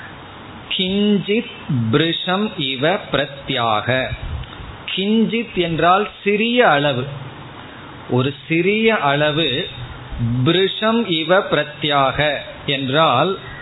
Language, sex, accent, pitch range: Tamil, male, native, 130-170 Hz